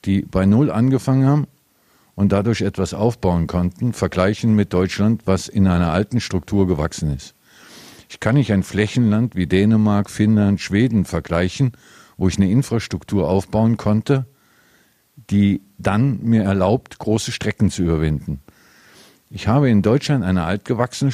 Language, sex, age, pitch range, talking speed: German, male, 50-69, 95-120 Hz, 140 wpm